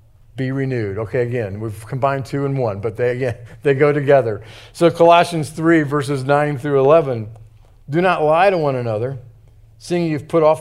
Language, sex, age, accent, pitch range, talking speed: English, male, 50-69, American, 110-140 Hz, 180 wpm